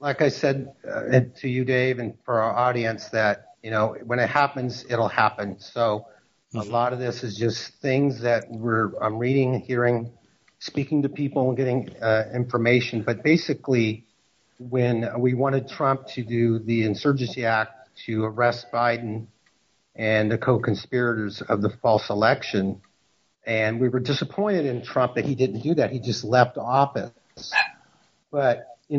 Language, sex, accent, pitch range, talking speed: English, male, American, 115-135 Hz, 155 wpm